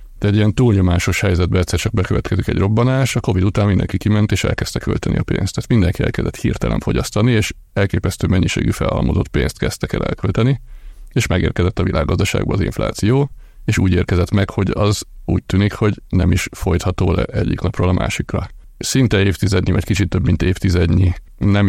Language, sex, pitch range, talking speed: Hungarian, male, 90-105 Hz, 175 wpm